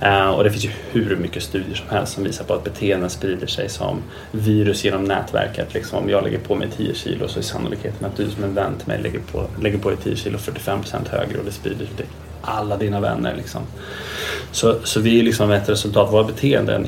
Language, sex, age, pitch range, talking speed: Swedish, male, 20-39, 100-110 Hz, 235 wpm